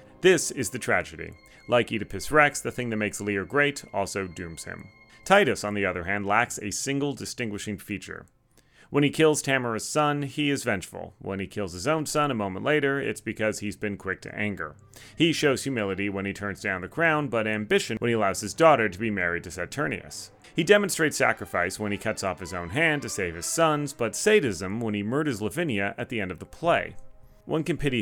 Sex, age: male, 30-49